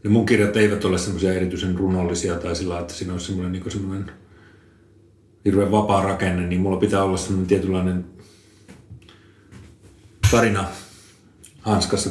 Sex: male